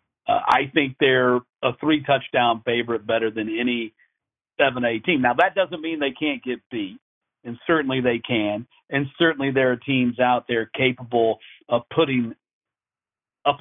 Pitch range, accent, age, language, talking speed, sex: 115-140 Hz, American, 50-69, English, 155 wpm, male